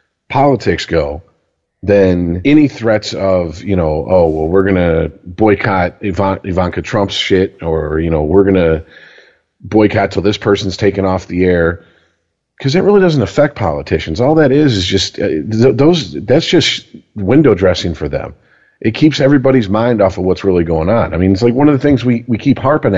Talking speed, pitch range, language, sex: 185 wpm, 90-125 Hz, English, male